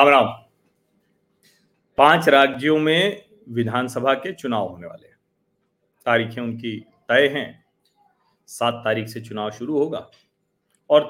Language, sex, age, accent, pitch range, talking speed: Hindi, male, 40-59, native, 130-210 Hz, 120 wpm